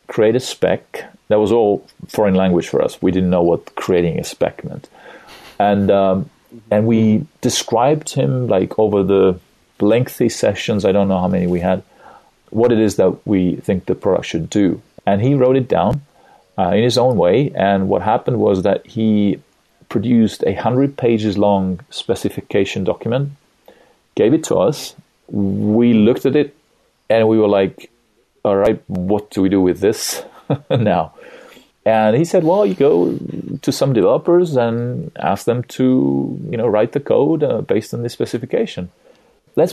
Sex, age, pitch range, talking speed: male, 40-59, 95-120 Hz, 170 wpm